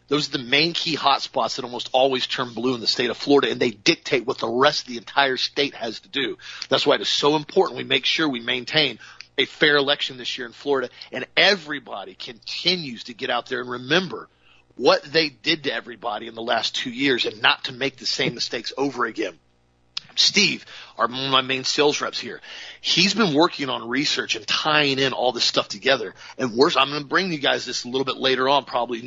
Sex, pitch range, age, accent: male, 120-155 Hz, 40-59, American